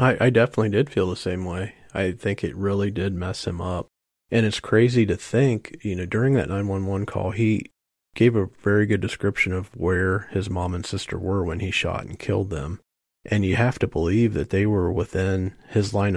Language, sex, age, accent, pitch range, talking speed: English, male, 40-59, American, 95-110 Hz, 210 wpm